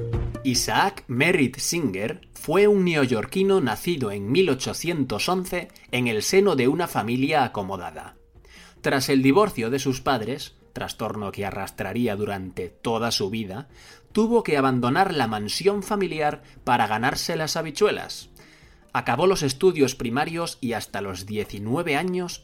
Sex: male